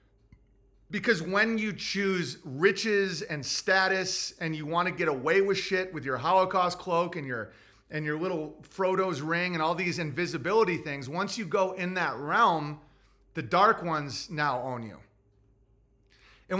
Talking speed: 160 wpm